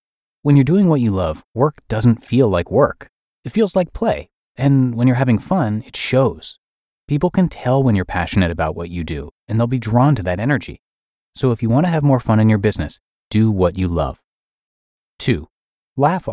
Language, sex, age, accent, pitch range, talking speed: English, male, 30-49, American, 95-140 Hz, 205 wpm